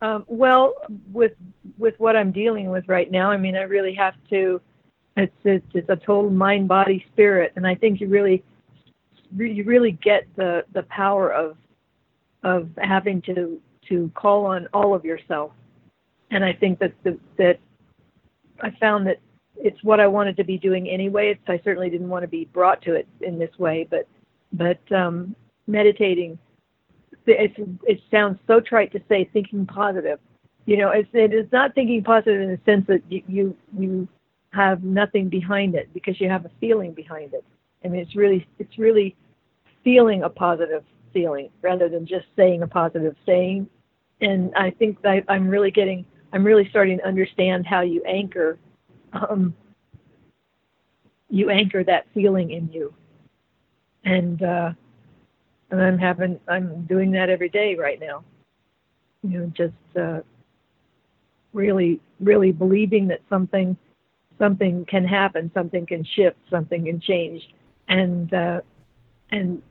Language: English